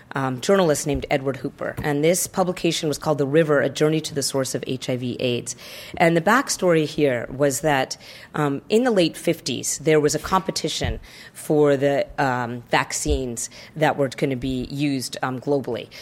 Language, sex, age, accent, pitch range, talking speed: English, female, 40-59, American, 140-165 Hz, 175 wpm